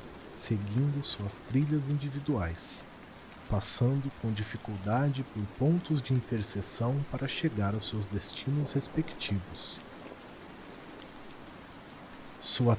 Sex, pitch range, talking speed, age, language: male, 100-140 Hz, 85 wpm, 40-59, Portuguese